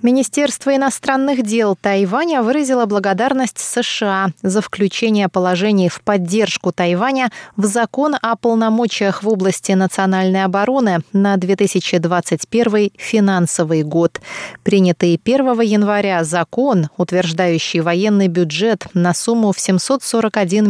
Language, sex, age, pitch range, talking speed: Russian, female, 20-39, 180-240 Hz, 105 wpm